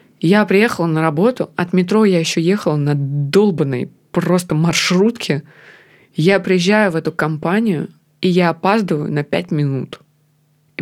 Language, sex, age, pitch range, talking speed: Russian, female, 20-39, 165-215 Hz, 140 wpm